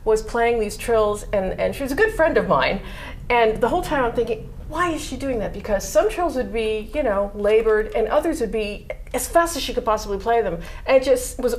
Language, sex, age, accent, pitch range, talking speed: English, female, 40-59, American, 215-305 Hz, 250 wpm